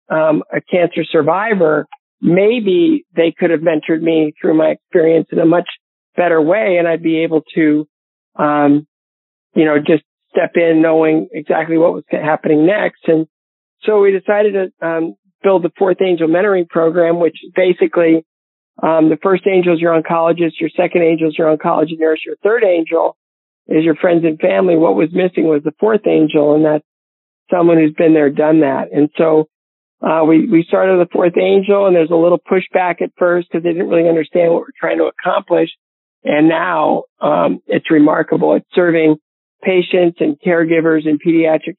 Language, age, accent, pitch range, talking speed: English, 50-69, American, 155-175 Hz, 180 wpm